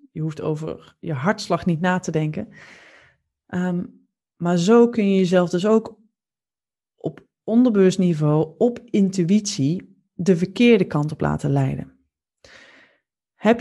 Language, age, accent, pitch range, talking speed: Dutch, 20-39, Dutch, 155-205 Hz, 120 wpm